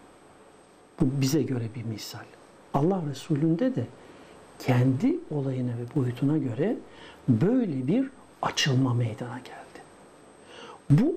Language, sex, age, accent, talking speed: Turkish, male, 60-79, native, 100 wpm